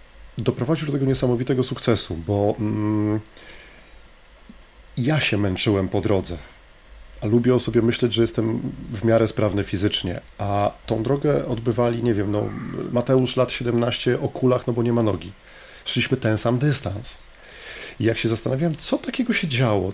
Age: 40-59